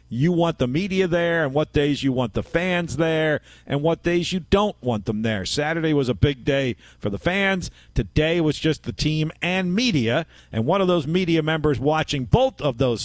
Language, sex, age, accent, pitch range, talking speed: English, male, 50-69, American, 125-175 Hz, 210 wpm